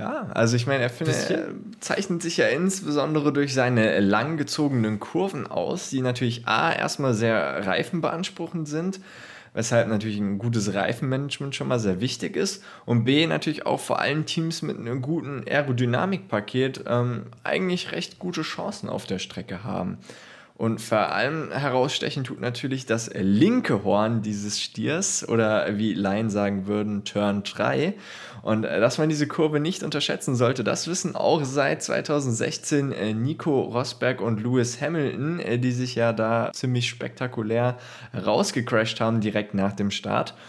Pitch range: 115-150 Hz